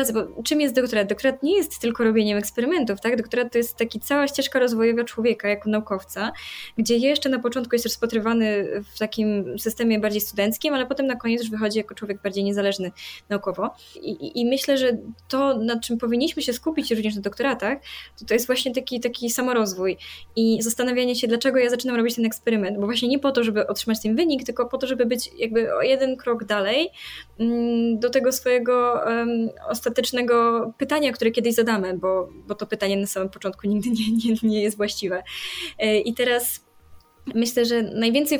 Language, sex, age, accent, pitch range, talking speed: Polish, female, 20-39, native, 215-245 Hz, 190 wpm